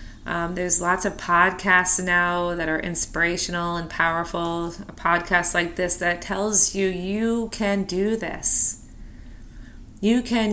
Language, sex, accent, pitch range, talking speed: English, female, American, 170-195 Hz, 135 wpm